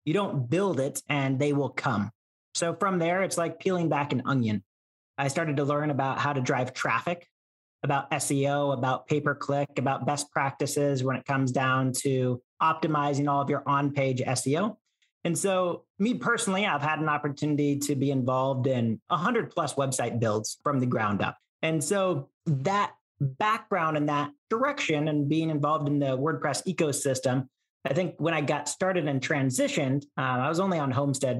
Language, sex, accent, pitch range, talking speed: English, male, American, 135-175 Hz, 175 wpm